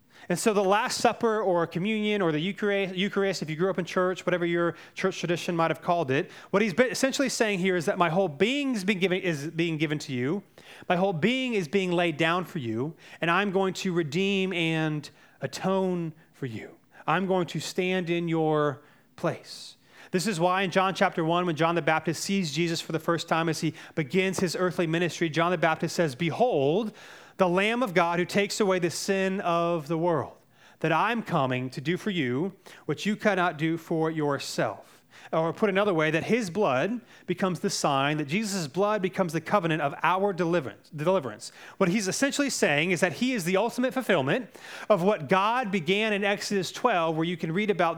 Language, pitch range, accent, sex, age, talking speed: English, 165-200 Hz, American, male, 30-49, 200 wpm